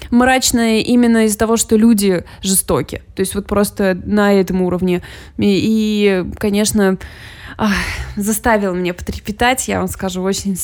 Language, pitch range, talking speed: Russian, 195-225 Hz, 135 wpm